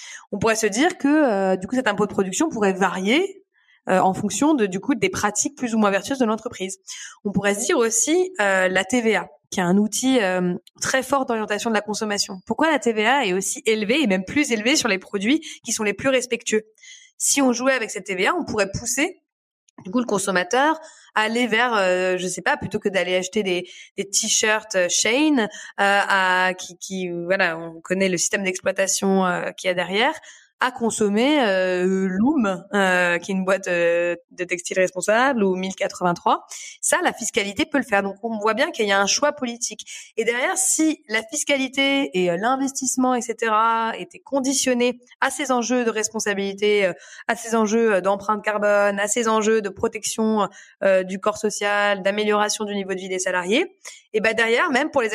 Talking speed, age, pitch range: 200 wpm, 20-39, 195-250 Hz